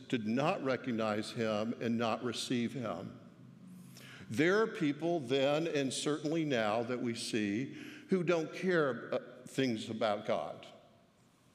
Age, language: 60-79, English